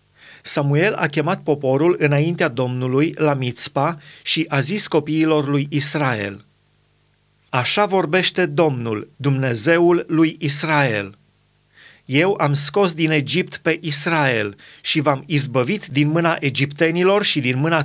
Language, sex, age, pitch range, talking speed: Romanian, male, 30-49, 140-165 Hz, 120 wpm